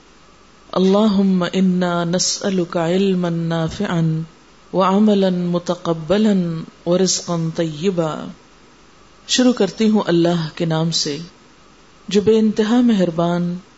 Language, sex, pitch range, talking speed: Urdu, female, 170-205 Hz, 75 wpm